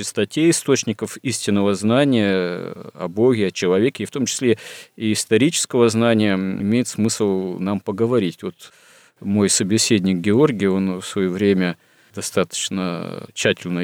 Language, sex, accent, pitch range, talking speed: Russian, male, native, 90-110 Hz, 125 wpm